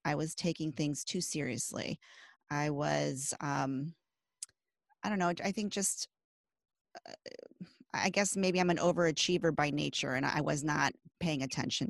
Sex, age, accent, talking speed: female, 30-49, American, 150 wpm